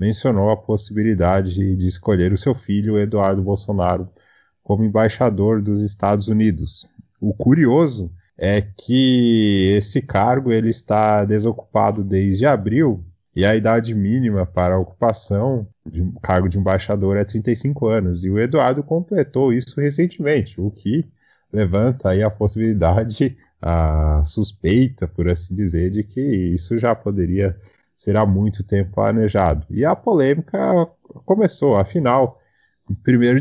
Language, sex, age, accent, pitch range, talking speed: Portuguese, male, 20-39, Brazilian, 100-125 Hz, 130 wpm